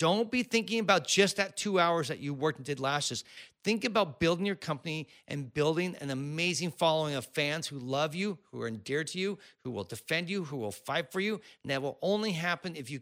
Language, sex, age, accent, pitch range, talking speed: English, male, 40-59, American, 125-175 Hz, 230 wpm